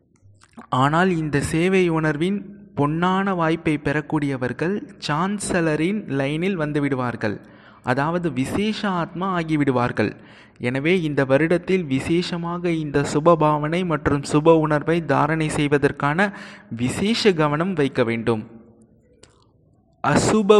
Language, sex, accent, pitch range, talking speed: Tamil, male, native, 140-175 Hz, 90 wpm